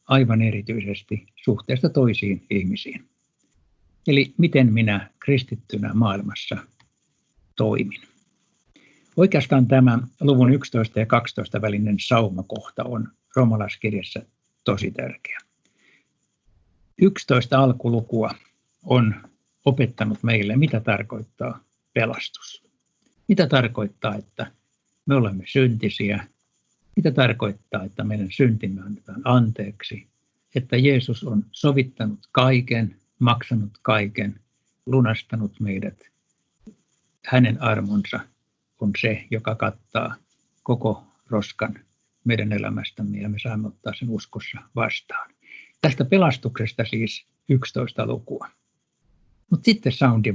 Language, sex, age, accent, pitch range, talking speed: Finnish, male, 60-79, native, 105-130 Hz, 90 wpm